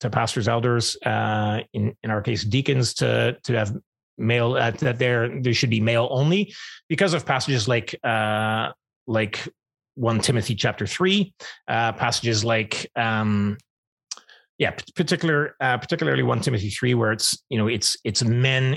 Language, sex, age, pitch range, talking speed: English, male, 30-49, 110-130 Hz, 155 wpm